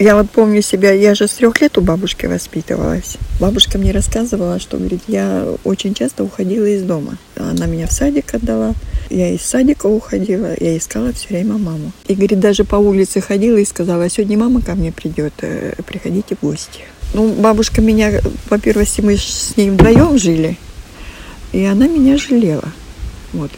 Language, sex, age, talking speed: Russian, female, 50-69, 170 wpm